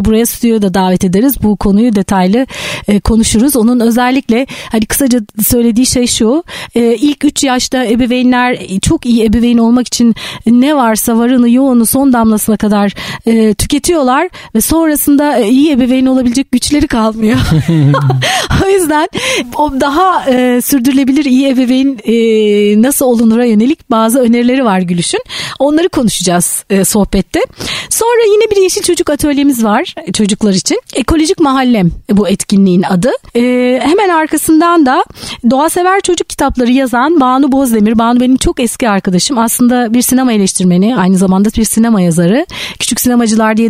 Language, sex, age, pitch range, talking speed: Turkish, female, 40-59, 215-275 Hz, 135 wpm